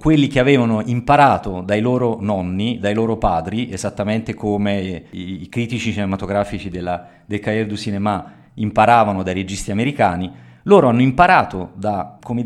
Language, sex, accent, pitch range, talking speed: Italian, male, native, 95-120 Hz, 145 wpm